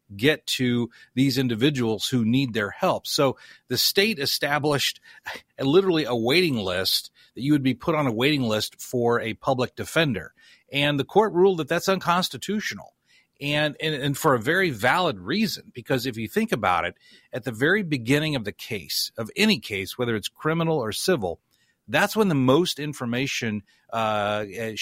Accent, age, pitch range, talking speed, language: American, 40-59, 115-155 Hz, 170 wpm, English